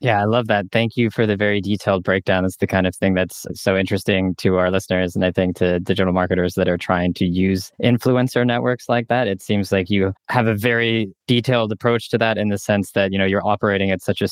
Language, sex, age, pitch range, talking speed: English, male, 20-39, 95-110 Hz, 255 wpm